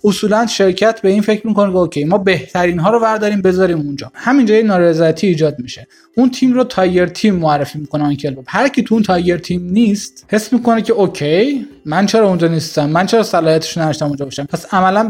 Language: Persian